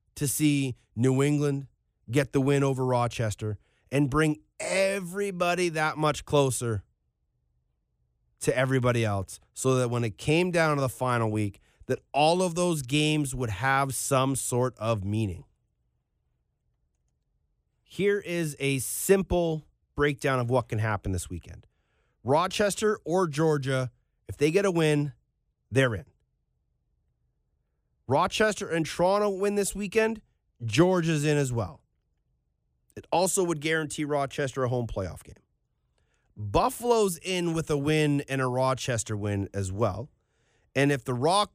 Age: 30-49